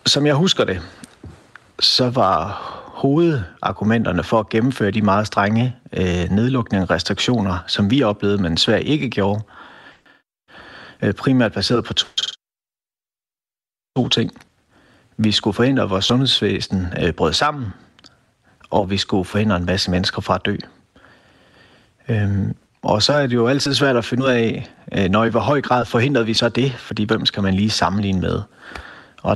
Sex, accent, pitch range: male, native, 100-125 Hz